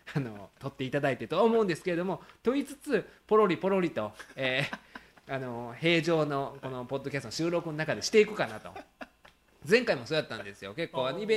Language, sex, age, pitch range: Japanese, male, 20-39, 115-160 Hz